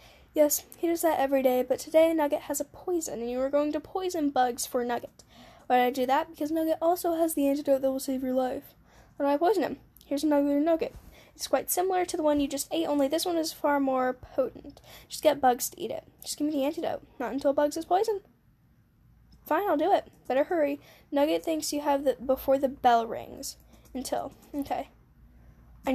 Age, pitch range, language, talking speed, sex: 10-29, 255-310 Hz, English, 225 wpm, female